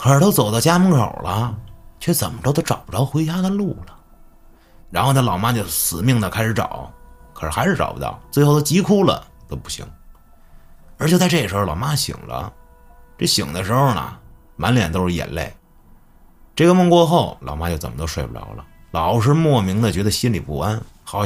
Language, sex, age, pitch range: Chinese, male, 30-49, 75-115 Hz